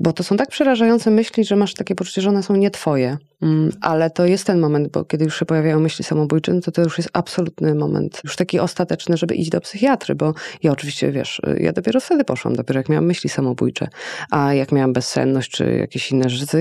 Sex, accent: female, native